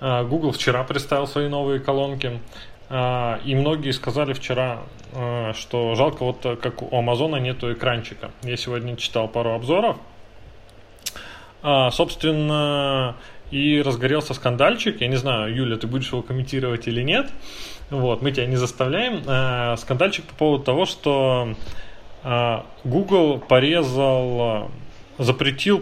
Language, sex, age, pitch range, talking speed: Russian, male, 20-39, 120-145 Hz, 115 wpm